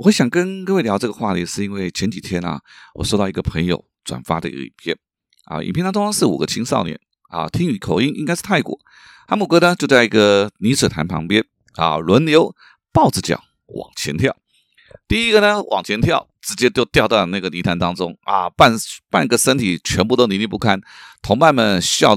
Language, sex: Chinese, male